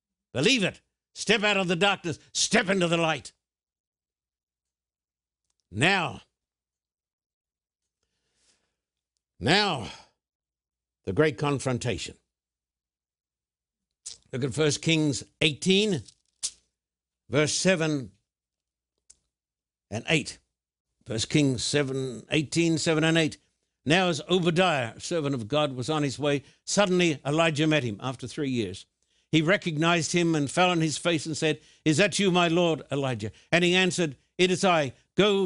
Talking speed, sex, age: 125 wpm, male, 60-79